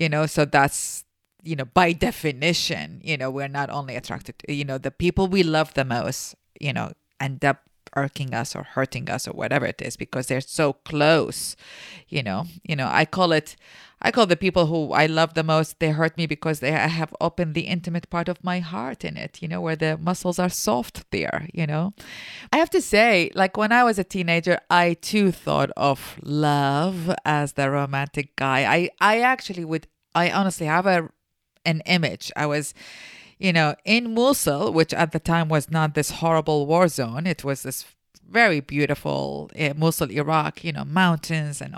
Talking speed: 200 wpm